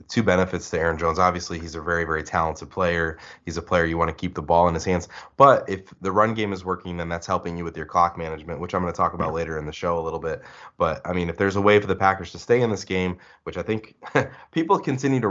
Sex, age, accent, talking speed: male, 20-39, American, 285 wpm